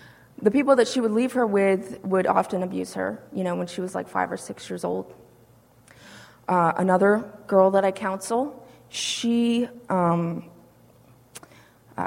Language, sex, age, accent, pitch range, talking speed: English, female, 20-39, American, 175-205 Hz, 160 wpm